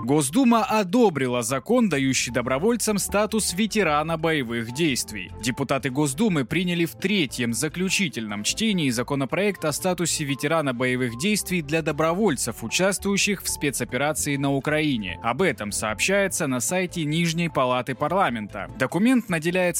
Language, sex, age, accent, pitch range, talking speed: Russian, male, 20-39, native, 125-180 Hz, 120 wpm